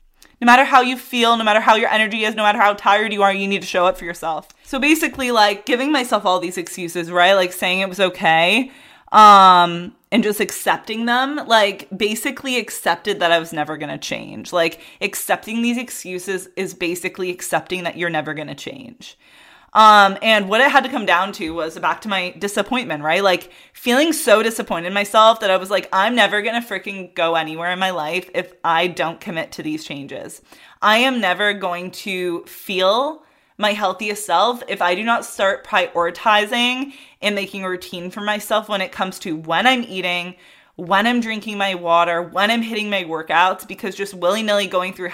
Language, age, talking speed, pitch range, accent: English, 20-39, 200 wpm, 175-220 Hz, American